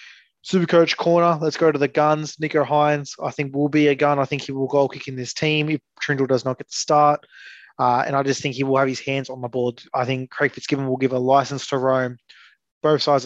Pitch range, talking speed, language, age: 130-145 Hz, 260 wpm, English, 20-39